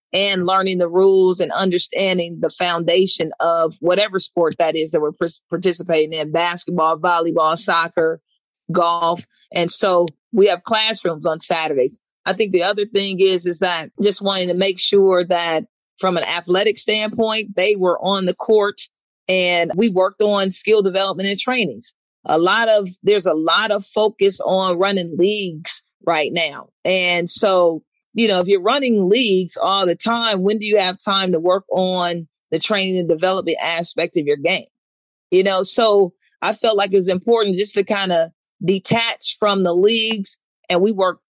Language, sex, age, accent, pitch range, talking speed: English, female, 40-59, American, 175-200 Hz, 175 wpm